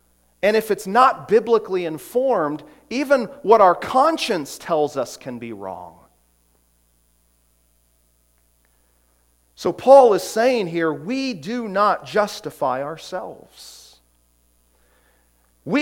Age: 40-59